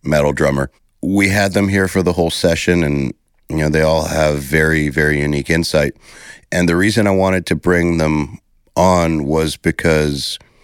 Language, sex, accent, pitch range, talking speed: English, male, American, 75-85 Hz, 175 wpm